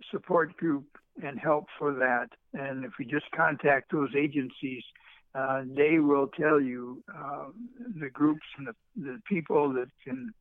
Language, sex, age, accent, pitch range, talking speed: English, male, 60-79, American, 140-180 Hz, 160 wpm